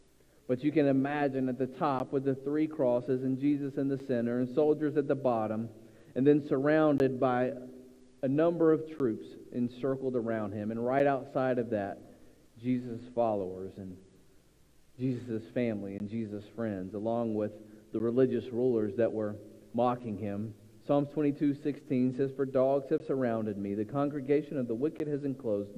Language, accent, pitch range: English, American, 110-140 Hz